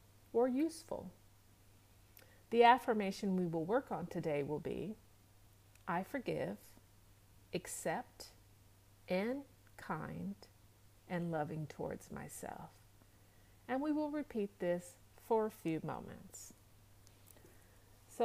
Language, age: English, 50-69